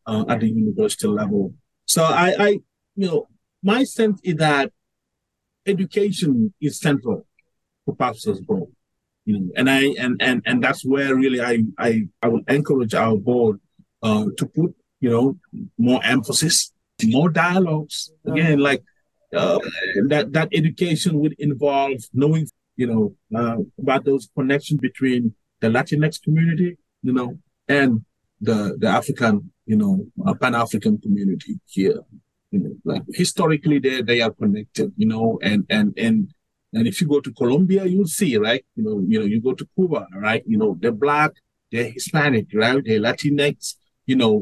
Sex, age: male, 30-49